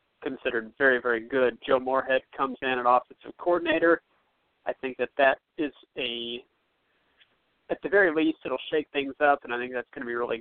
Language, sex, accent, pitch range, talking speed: English, male, American, 125-145 Hz, 200 wpm